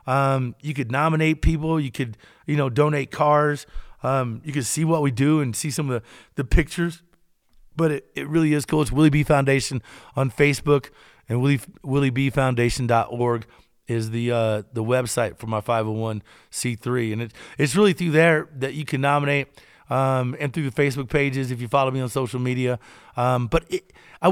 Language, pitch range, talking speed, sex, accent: English, 125-155 Hz, 185 wpm, male, American